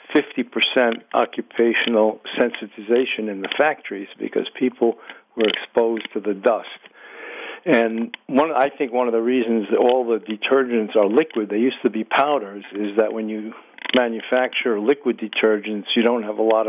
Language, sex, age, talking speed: English, male, 60-79, 160 wpm